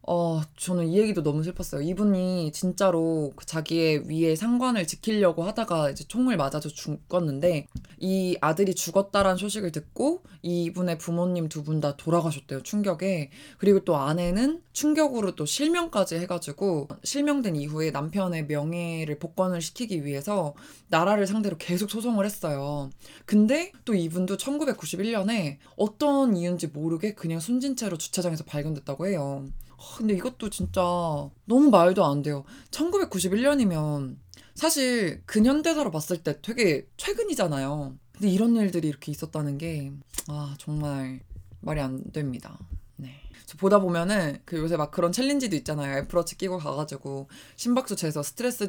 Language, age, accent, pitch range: Korean, 20-39, native, 150-205 Hz